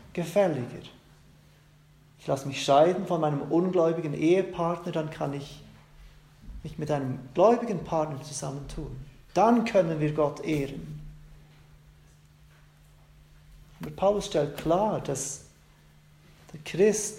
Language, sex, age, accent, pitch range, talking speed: German, male, 40-59, German, 145-170 Hz, 105 wpm